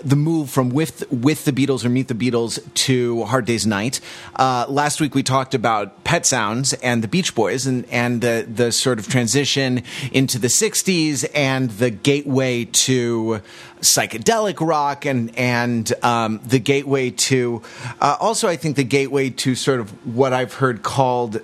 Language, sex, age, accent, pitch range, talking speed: English, male, 30-49, American, 115-140 Hz, 175 wpm